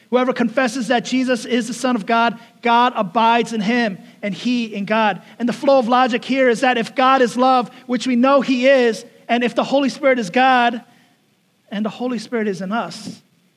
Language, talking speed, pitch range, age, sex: English, 210 wpm, 215-255 Hz, 30-49, male